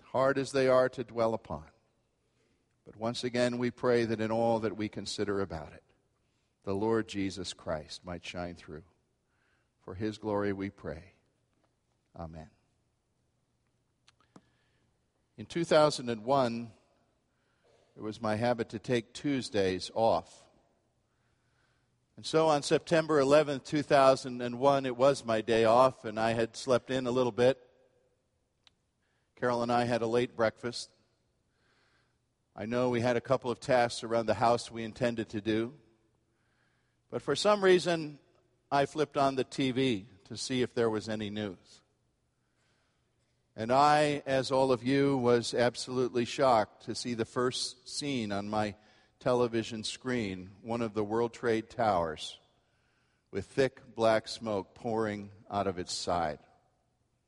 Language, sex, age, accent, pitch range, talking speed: English, male, 50-69, American, 110-130 Hz, 140 wpm